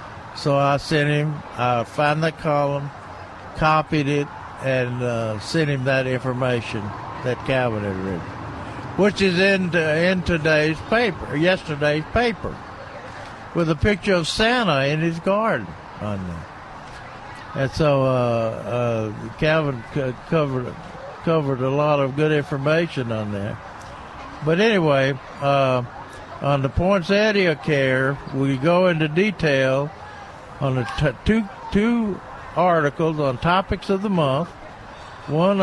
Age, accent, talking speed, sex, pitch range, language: 60-79, American, 130 wpm, male, 125-165 Hz, English